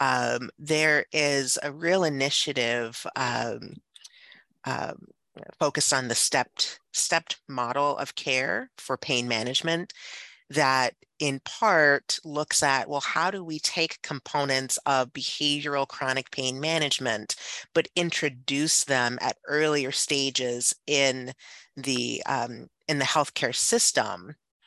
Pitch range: 130-155 Hz